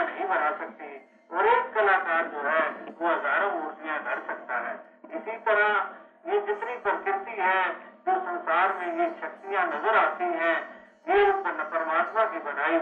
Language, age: Hindi, 50-69